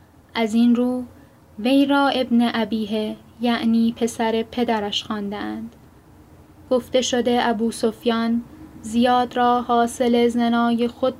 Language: Persian